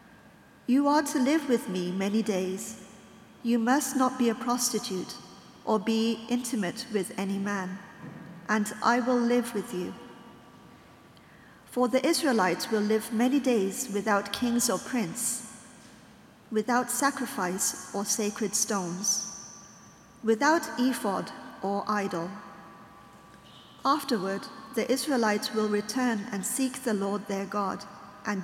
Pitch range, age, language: 205-245 Hz, 50-69, English